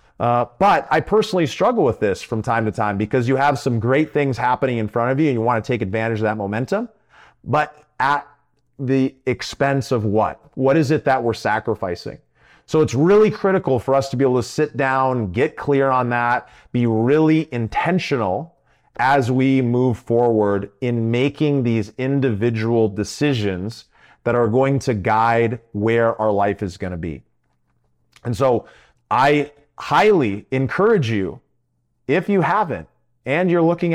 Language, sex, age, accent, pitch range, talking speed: English, male, 30-49, American, 110-140 Hz, 170 wpm